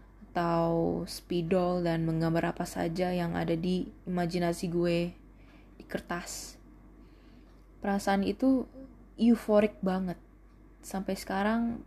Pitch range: 180-205 Hz